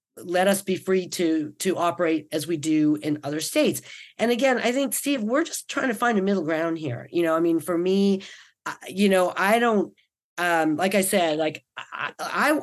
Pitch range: 165-215 Hz